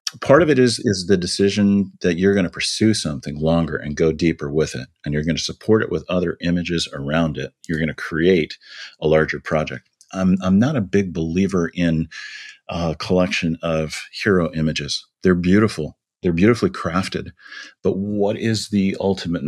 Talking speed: 180 wpm